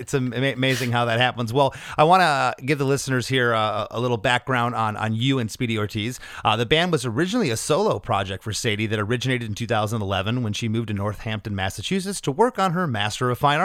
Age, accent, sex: 30-49, American, male